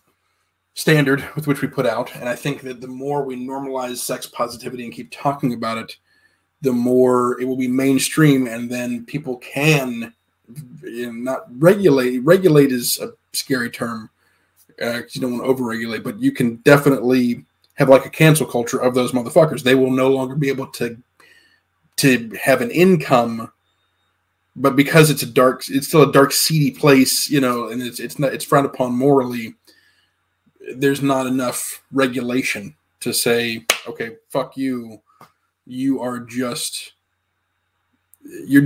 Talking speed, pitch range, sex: 160 wpm, 120-140 Hz, male